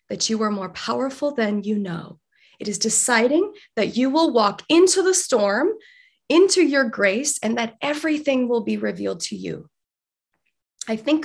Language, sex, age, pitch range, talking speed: English, female, 20-39, 215-310 Hz, 165 wpm